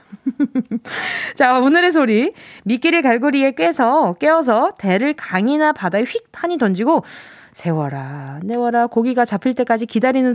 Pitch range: 220-330 Hz